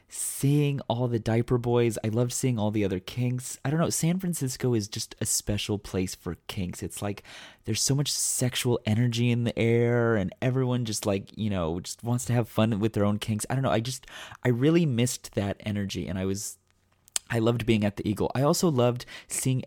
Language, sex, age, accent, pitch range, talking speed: English, male, 30-49, American, 100-125 Hz, 220 wpm